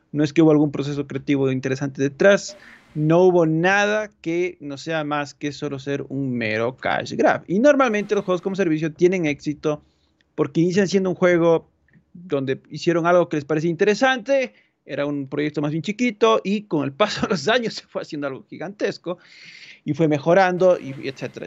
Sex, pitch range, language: male, 145-185 Hz, Spanish